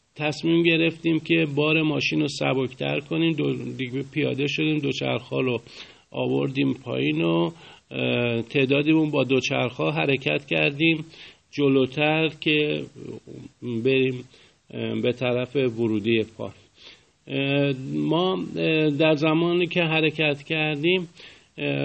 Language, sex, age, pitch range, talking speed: Persian, male, 50-69, 130-165 Hz, 95 wpm